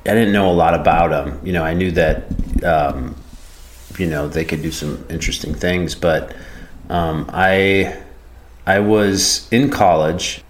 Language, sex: English, male